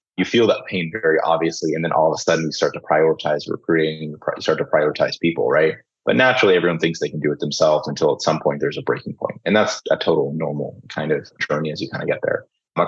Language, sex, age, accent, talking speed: English, male, 30-49, American, 250 wpm